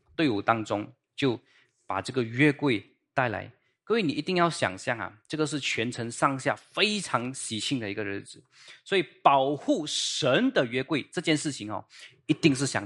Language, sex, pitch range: Chinese, male, 110-155 Hz